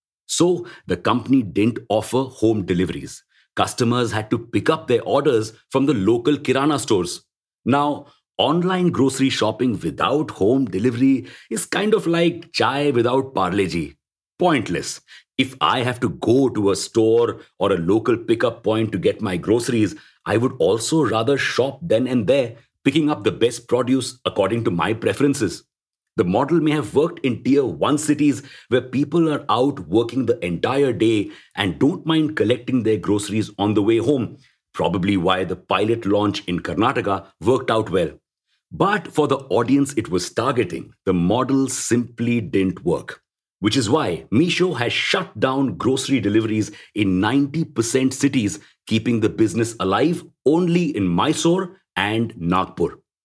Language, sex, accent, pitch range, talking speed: English, male, Indian, 105-140 Hz, 155 wpm